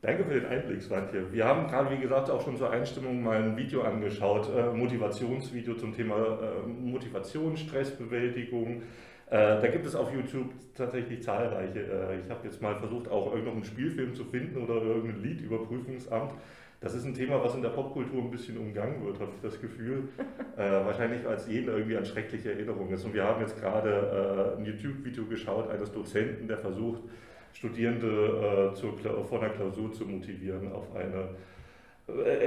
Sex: male